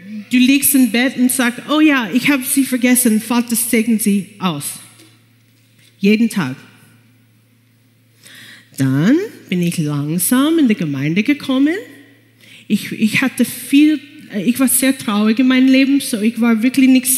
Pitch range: 170-275 Hz